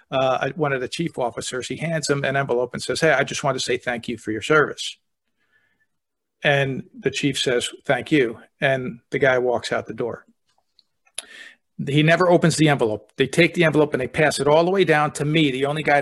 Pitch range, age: 135-170 Hz, 50-69